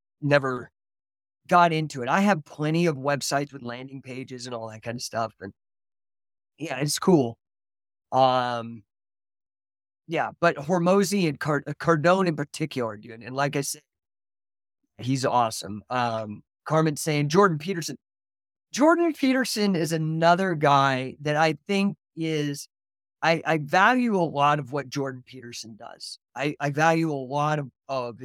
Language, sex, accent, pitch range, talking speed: English, male, American, 125-165 Hz, 145 wpm